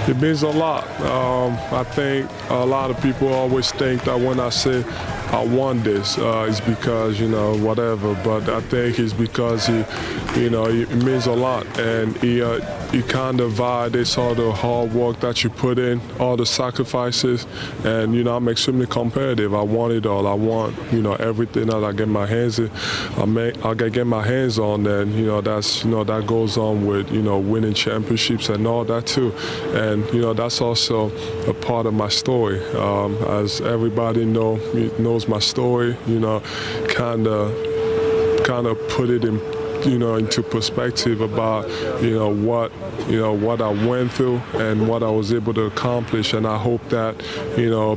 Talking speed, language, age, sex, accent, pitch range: 195 wpm, English, 20-39, female, American, 110-120 Hz